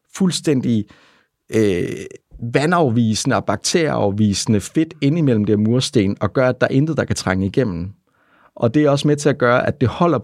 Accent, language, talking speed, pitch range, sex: native, Danish, 175 wpm, 105-135 Hz, male